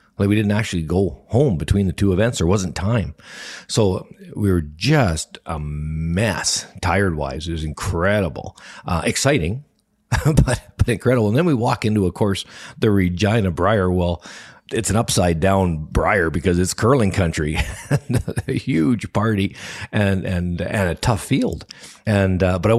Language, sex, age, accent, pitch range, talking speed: English, male, 50-69, American, 85-110 Hz, 165 wpm